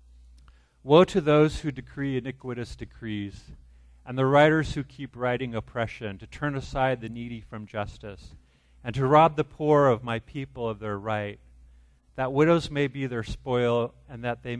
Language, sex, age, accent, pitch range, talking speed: English, male, 40-59, American, 100-130 Hz, 170 wpm